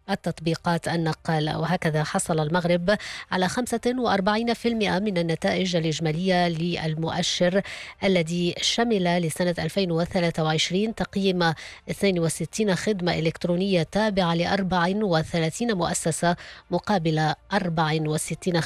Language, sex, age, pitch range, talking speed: English, female, 20-39, 165-195 Hz, 80 wpm